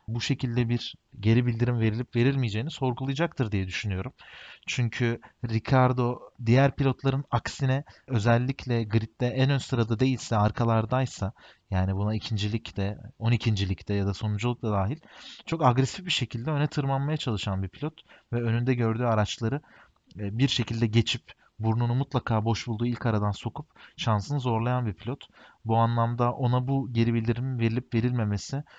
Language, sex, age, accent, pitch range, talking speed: Turkish, male, 40-59, native, 110-130 Hz, 140 wpm